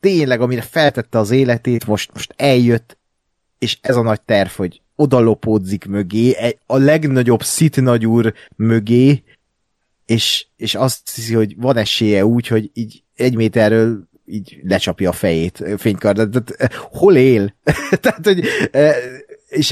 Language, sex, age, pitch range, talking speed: Hungarian, male, 30-49, 110-135 Hz, 130 wpm